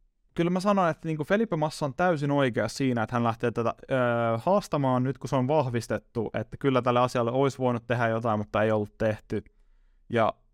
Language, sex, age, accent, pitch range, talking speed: Finnish, male, 20-39, native, 115-150 Hz, 200 wpm